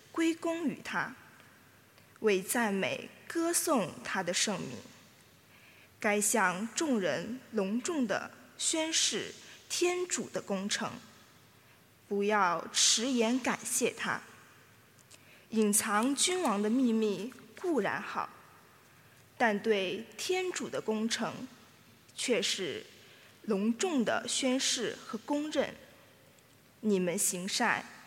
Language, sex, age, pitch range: English, female, 20-39, 210-280 Hz